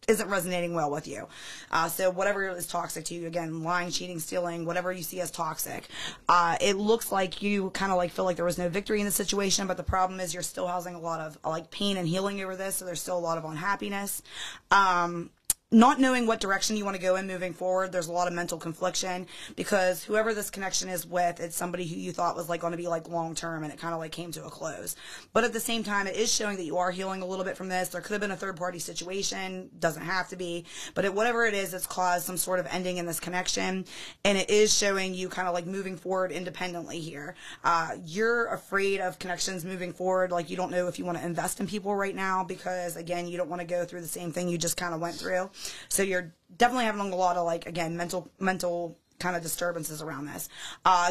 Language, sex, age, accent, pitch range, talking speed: English, female, 20-39, American, 170-195 Hz, 255 wpm